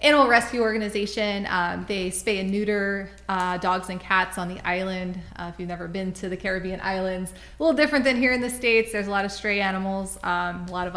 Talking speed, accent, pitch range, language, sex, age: 230 wpm, American, 185-215 Hz, English, female, 20-39